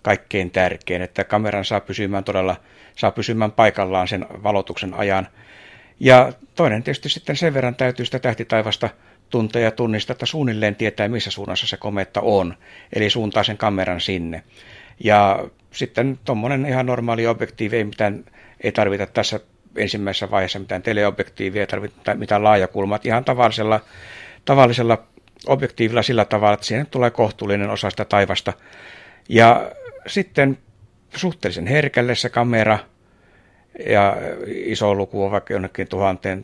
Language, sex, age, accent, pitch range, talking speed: Finnish, male, 60-79, native, 100-120 Hz, 135 wpm